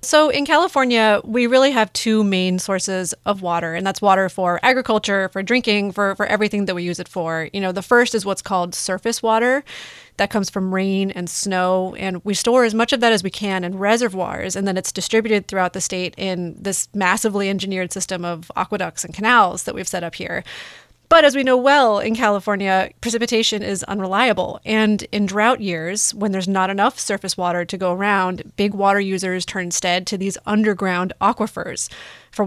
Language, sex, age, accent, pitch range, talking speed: English, female, 30-49, American, 185-220 Hz, 200 wpm